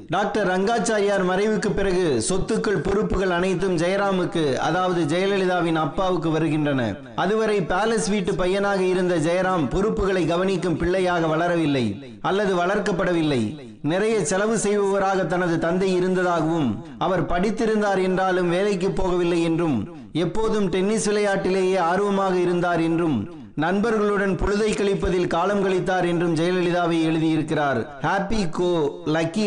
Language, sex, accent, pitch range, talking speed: Tamil, male, native, 170-200 Hz, 105 wpm